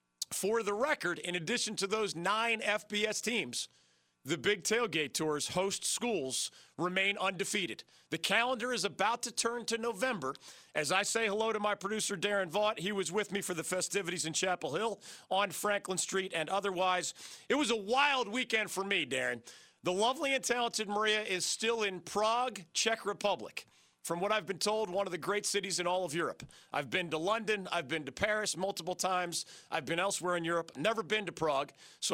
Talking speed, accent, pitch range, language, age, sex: 190 wpm, American, 175-215 Hz, English, 40-59, male